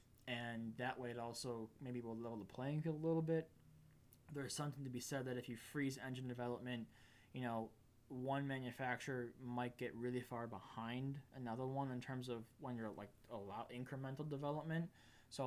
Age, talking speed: 20-39, 180 wpm